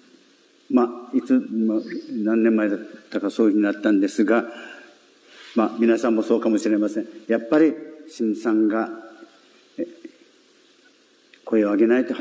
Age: 50-69